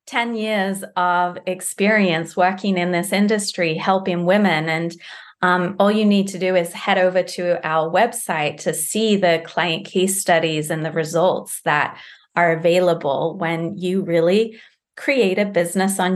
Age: 30-49